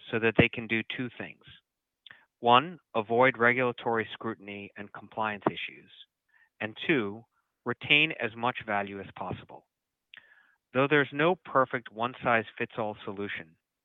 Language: English